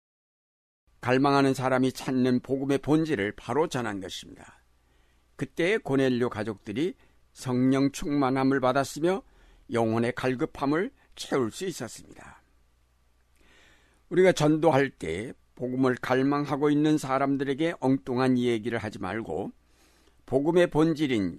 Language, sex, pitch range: Korean, male, 95-140 Hz